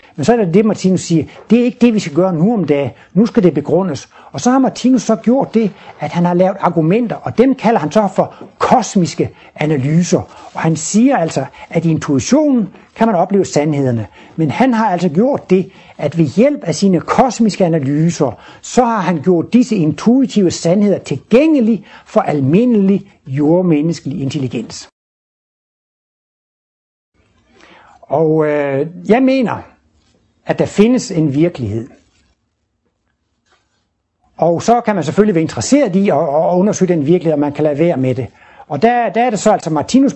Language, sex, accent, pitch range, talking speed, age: Danish, male, native, 145-215 Hz, 165 wpm, 60-79